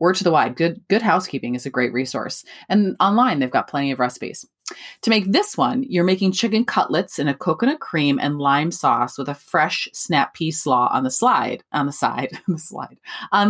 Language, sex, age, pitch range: English, female, 30-49, 145-220 Hz